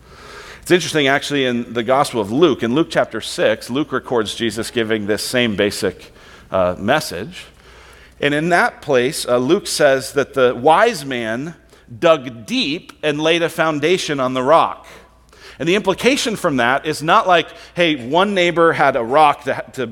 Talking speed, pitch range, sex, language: 170 wpm, 125-200 Hz, male, English